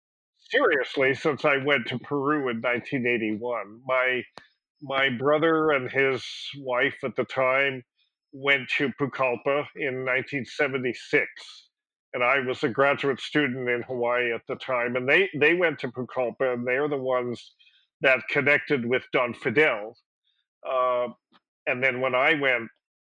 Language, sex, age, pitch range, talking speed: English, male, 50-69, 125-145 Hz, 140 wpm